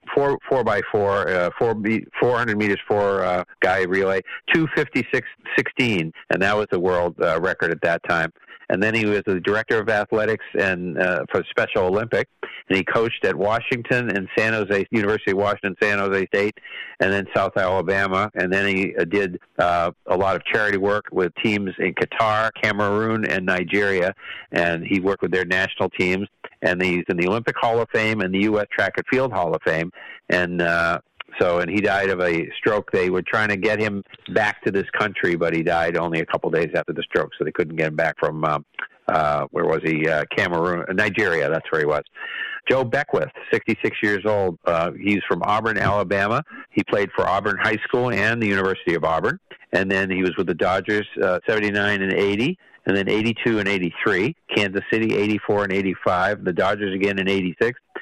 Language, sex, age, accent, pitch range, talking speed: English, male, 50-69, American, 90-105 Hz, 200 wpm